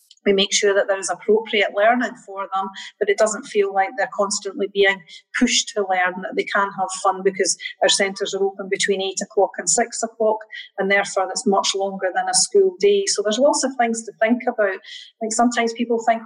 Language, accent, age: English, British, 40-59